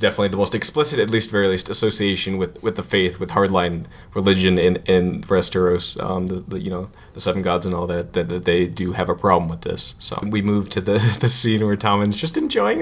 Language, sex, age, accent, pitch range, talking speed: English, male, 20-39, American, 90-110 Hz, 235 wpm